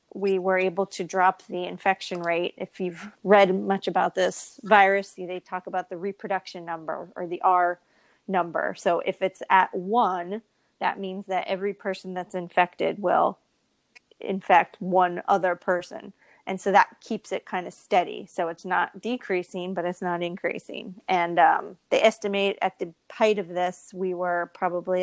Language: English